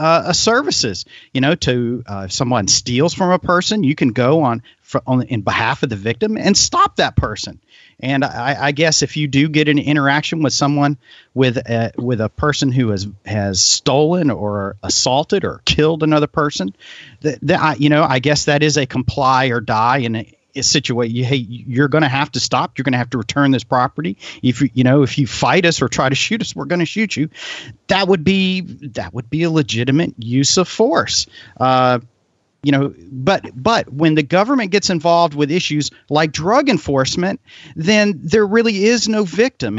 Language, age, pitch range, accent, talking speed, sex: English, 40-59, 130-170 Hz, American, 210 wpm, male